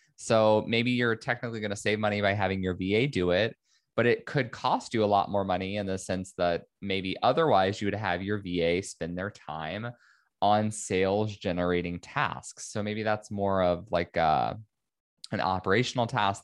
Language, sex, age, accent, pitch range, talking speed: English, male, 20-39, American, 95-120 Hz, 185 wpm